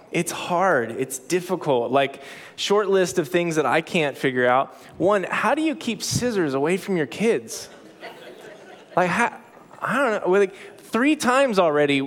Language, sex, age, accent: English, male, 20-39, American